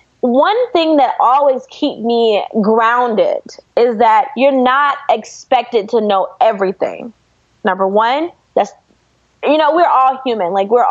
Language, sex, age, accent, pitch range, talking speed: English, female, 20-39, American, 220-285 Hz, 140 wpm